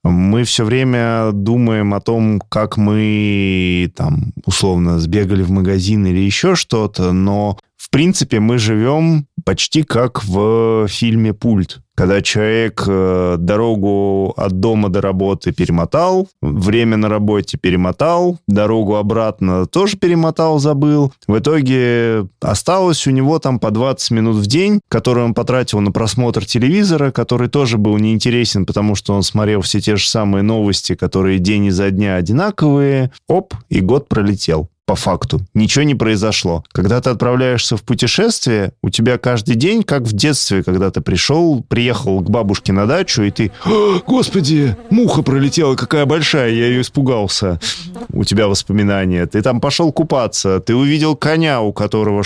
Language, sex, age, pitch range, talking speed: Russian, male, 20-39, 100-135 Hz, 150 wpm